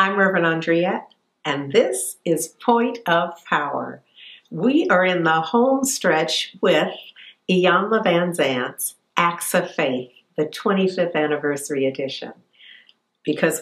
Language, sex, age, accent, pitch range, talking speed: English, female, 50-69, American, 155-205 Hz, 115 wpm